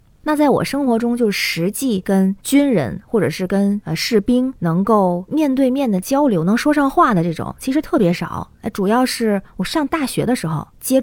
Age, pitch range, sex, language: 20-39, 175-235 Hz, female, Chinese